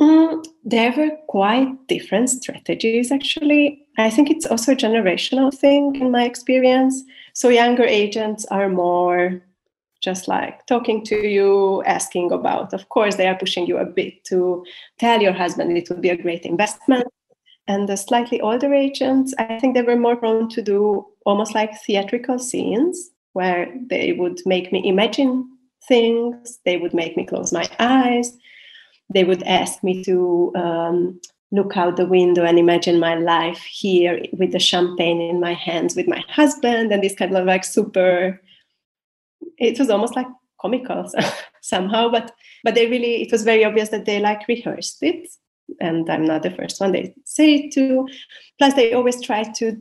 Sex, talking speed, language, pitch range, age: female, 170 wpm, English, 185-255 Hz, 30-49